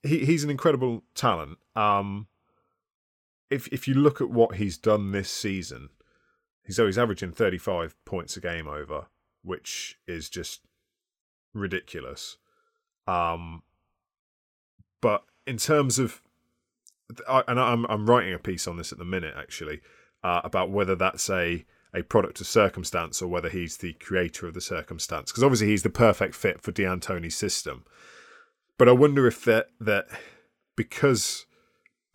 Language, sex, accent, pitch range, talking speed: English, male, British, 90-125 Hz, 145 wpm